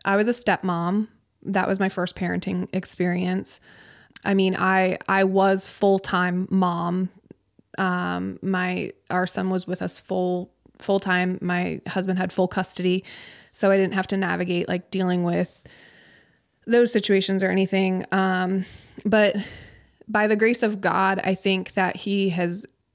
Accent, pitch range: American, 180-195 Hz